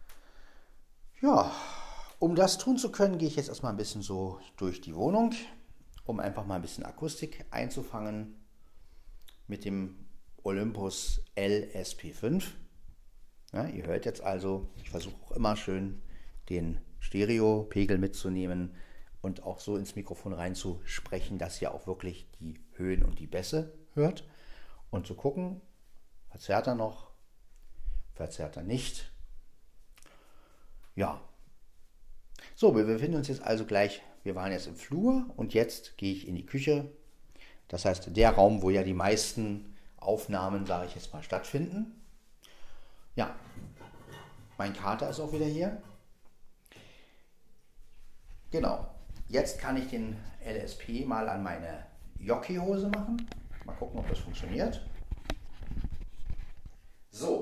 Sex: male